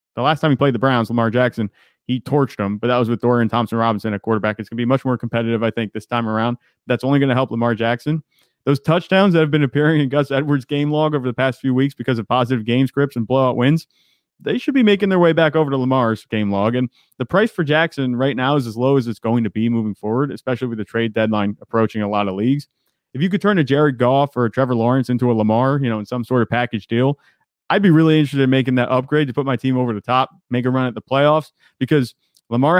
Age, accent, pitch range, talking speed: 30-49, American, 120-145 Hz, 270 wpm